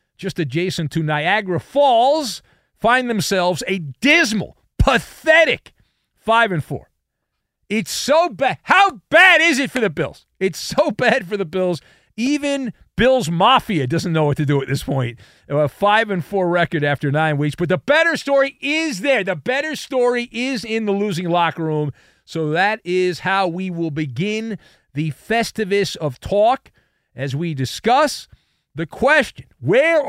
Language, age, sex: English, 40-59, male